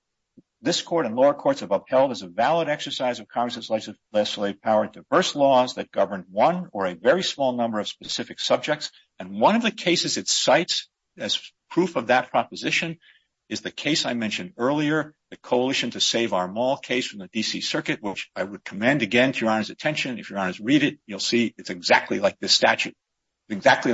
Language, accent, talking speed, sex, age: English, American, 200 wpm, male, 50-69